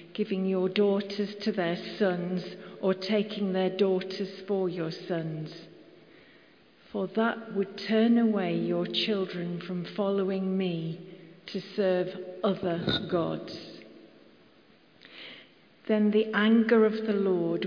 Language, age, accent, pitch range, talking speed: English, 50-69, British, 175-210 Hz, 110 wpm